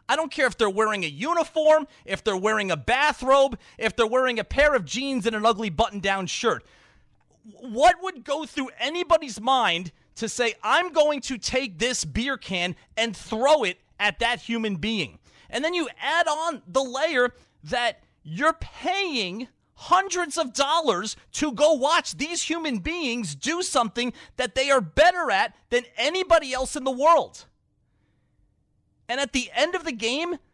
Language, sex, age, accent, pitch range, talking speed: English, male, 30-49, American, 215-310 Hz, 170 wpm